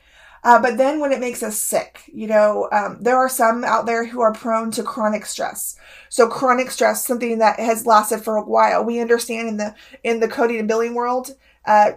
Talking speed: 215 wpm